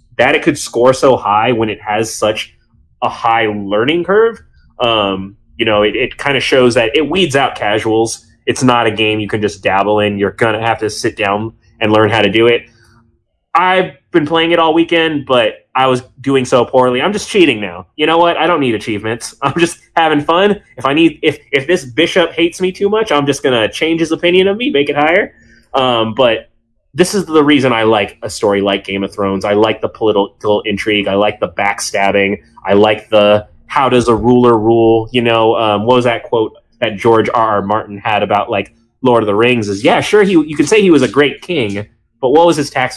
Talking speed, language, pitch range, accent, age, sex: 230 wpm, English, 105-140 Hz, American, 20-39, male